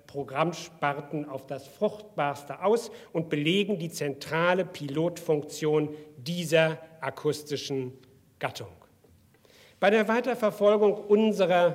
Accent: German